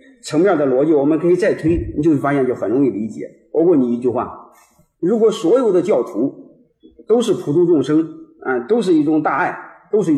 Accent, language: native, Chinese